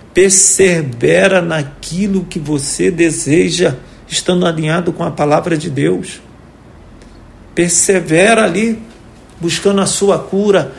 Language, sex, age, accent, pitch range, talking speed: Portuguese, male, 50-69, Brazilian, 165-200 Hz, 100 wpm